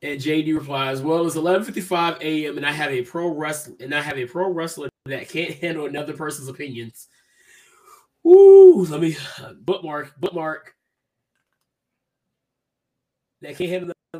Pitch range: 130-160 Hz